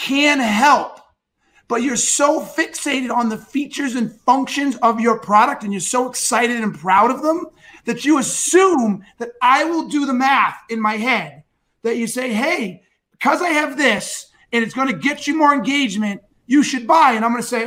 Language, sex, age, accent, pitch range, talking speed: English, male, 30-49, American, 235-300 Hz, 195 wpm